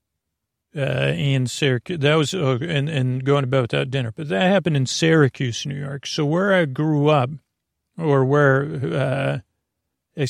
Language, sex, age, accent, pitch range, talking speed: English, male, 40-59, American, 125-145 Hz, 165 wpm